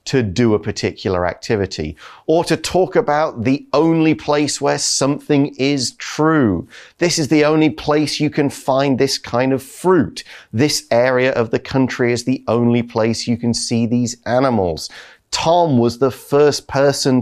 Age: 30-49